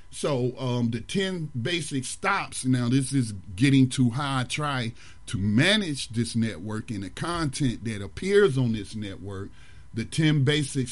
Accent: American